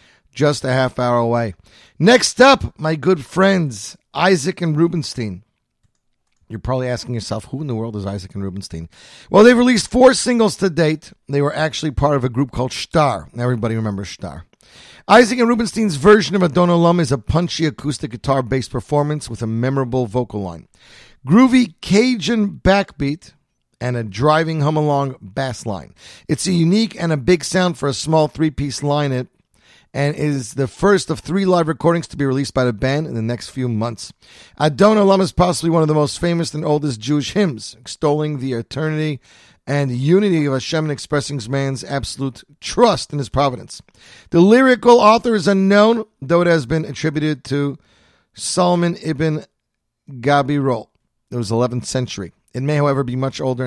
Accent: American